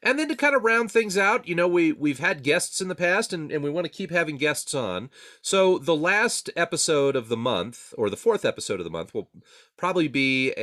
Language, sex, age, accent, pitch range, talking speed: English, male, 30-49, American, 115-190 Hz, 255 wpm